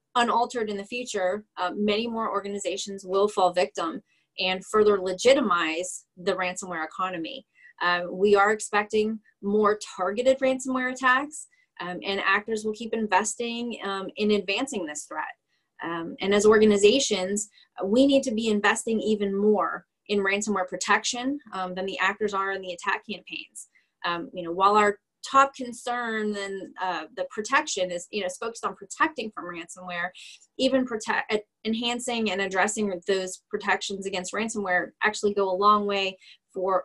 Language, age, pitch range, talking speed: English, 20-39, 185-220 Hz, 150 wpm